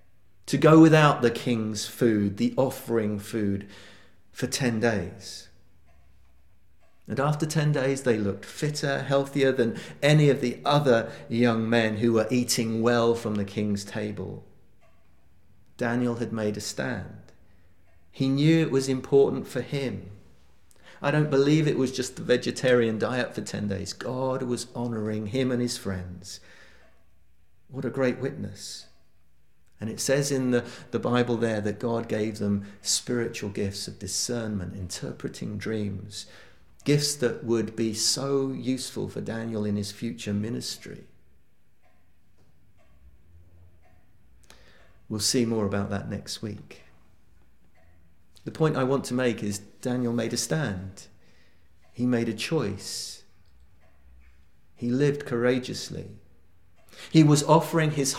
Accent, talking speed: British, 135 wpm